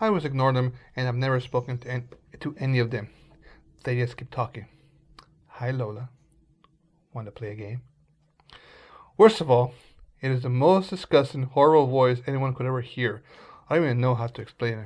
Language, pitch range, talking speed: English, 120-145 Hz, 185 wpm